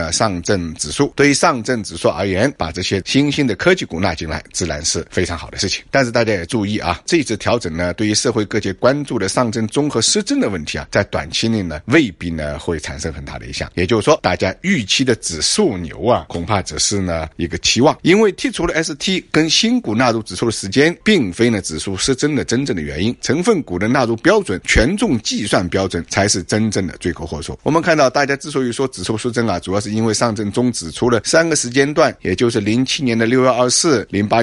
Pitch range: 95-135 Hz